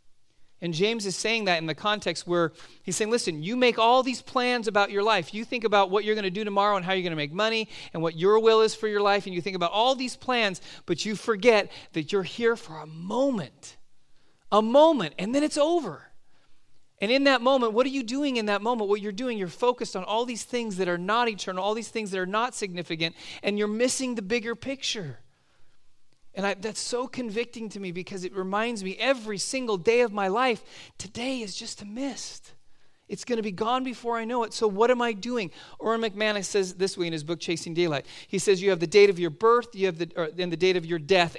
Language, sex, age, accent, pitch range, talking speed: English, male, 30-49, American, 175-230 Hz, 245 wpm